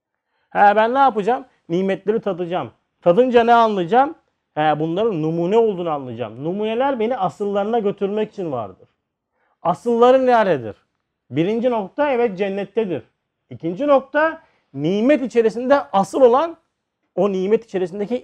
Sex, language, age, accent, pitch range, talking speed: male, Turkish, 40-59, native, 195-250 Hz, 115 wpm